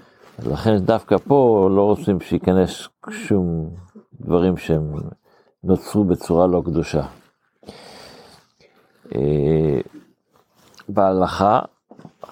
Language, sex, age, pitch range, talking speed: Hebrew, male, 60-79, 90-105 Hz, 65 wpm